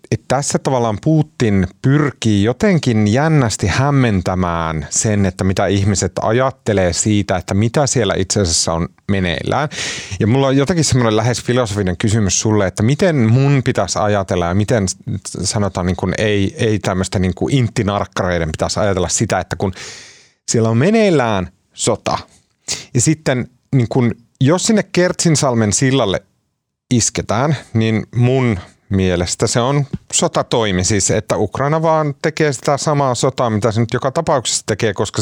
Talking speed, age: 140 wpm, 30-49